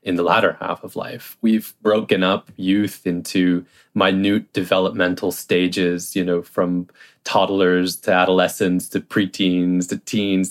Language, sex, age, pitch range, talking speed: English, male, 20-39, 90-115 Hz, 135 wpm